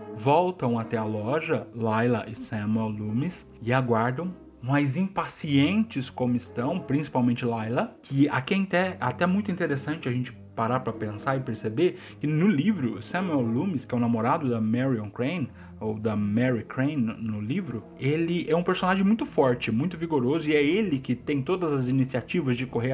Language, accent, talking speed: Portuguese, Brazilian, 175 wpm